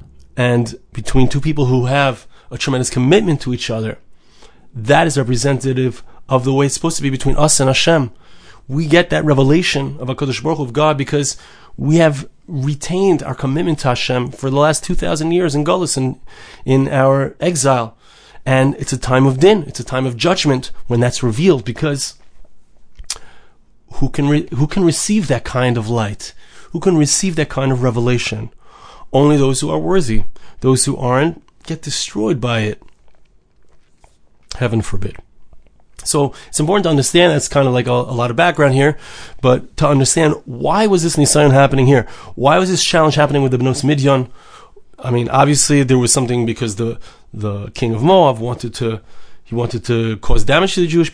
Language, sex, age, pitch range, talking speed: English, male, 30-49, 125-155 Hz, 180 wpm